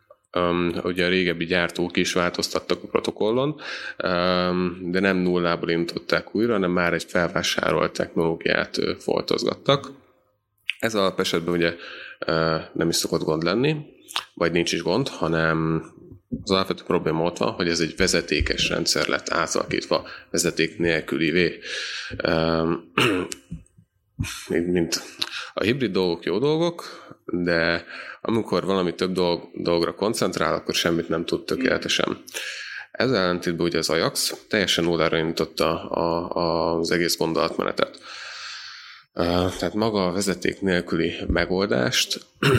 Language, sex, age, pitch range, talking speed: Hungarian, male, 20-39, 85-95 Hz, 125 wpm